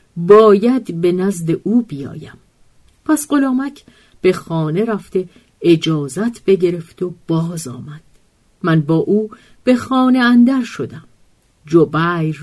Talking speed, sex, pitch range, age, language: 110 wpm, female, 160-215 Hz, 50-69, Persian